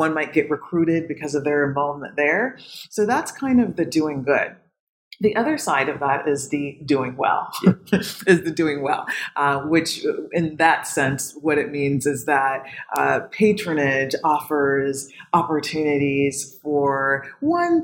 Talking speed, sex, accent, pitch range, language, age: 150 wpm, female, American, 145-180 Hz, English, 30-49